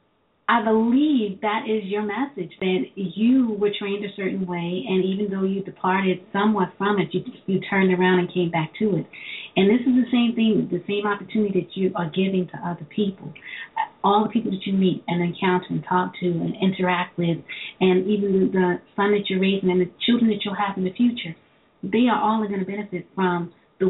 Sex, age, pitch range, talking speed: female, 40-59, 180-205 Hz, 210 wpm